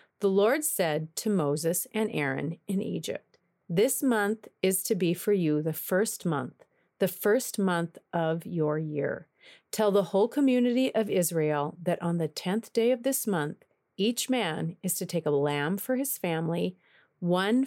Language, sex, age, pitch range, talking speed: English, female, 40-59, 175-220 Hz, 170 wpm